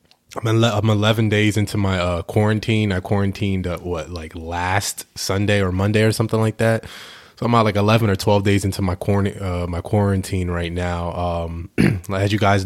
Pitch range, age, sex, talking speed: 95-115 Hz, 20-39, male, 190 wpm